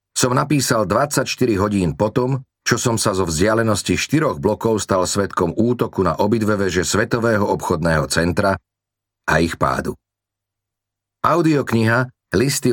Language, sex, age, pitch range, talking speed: Slovak, male, 40-59, 90-115 Hz, 125 wpm